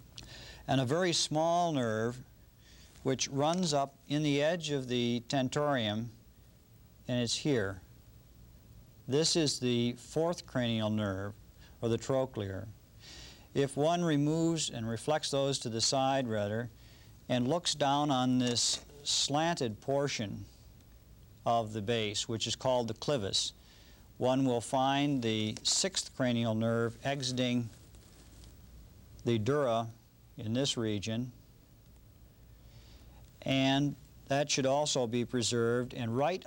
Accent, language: American, English